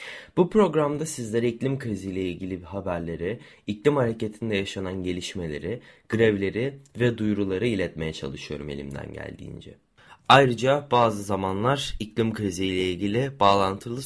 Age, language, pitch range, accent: 30-49, Turkish, 95-125 Hz, native